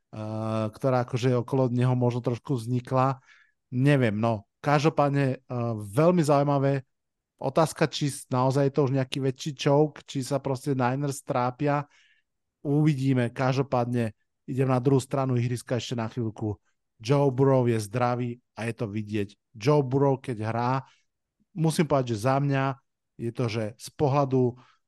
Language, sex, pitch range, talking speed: Slovak, male, 120-145 Hz, 145 wpm